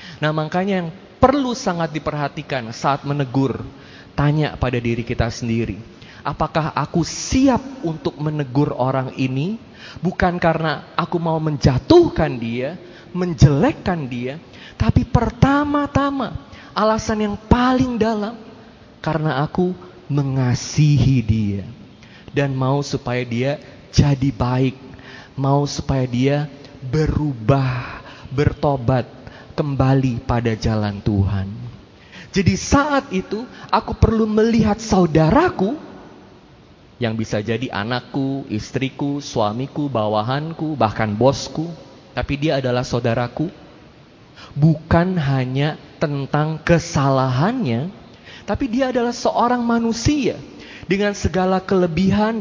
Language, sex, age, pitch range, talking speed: Indonesian, male, 20-39, 130-185 Hz, 95 wpm